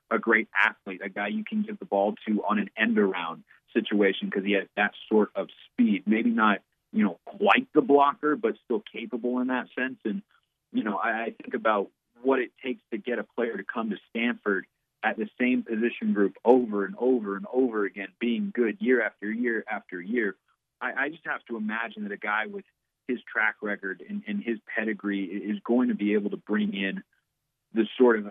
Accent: American